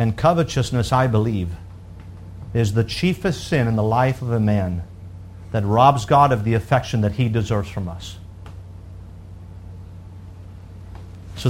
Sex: male